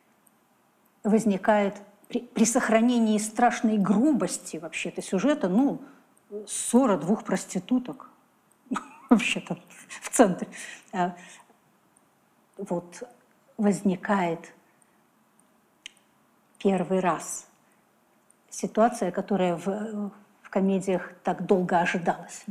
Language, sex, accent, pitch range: Russian, female, native, 190-230 Hz